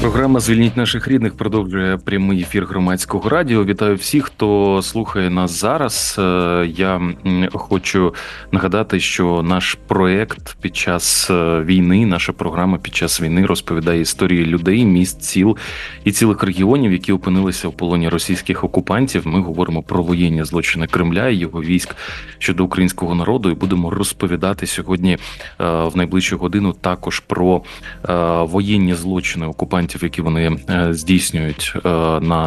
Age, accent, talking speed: 30-49, native, 130 wpm